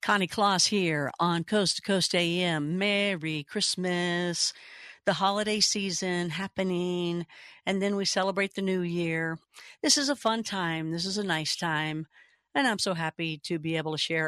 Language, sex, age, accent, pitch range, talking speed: English, female, 60-79, American, 170-205 Hz, 170 wpm